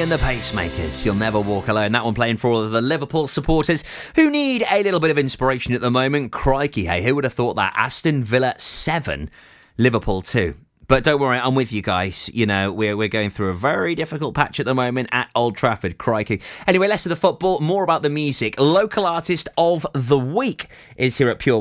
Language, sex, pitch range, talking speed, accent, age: English, male, 115-150 Hz, 220 wpm, British, 30-49